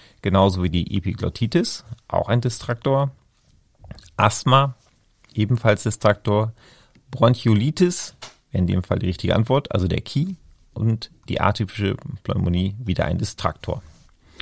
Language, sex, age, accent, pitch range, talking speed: German, male, 40-59, German, 95-120 Hz, 110 wpm